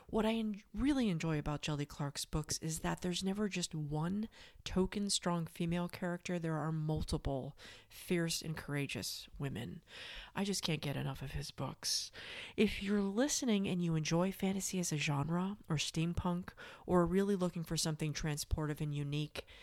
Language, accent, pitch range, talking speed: English, American, 155-200 Hz, 165 wpm